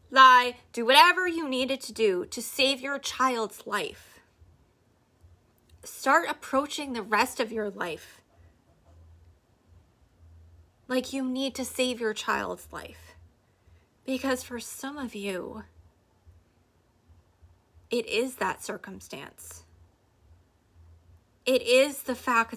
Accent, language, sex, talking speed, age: American, English, female, 105 wpm, 20-39